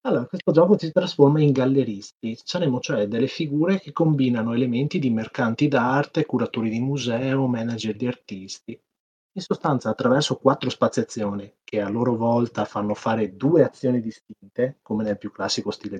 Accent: native